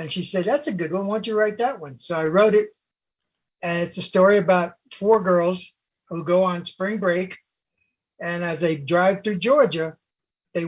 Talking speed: 200 wpm